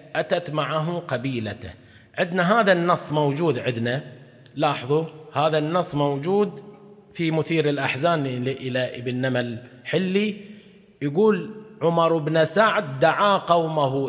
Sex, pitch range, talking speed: male, 125-175 Hz, 105 wpm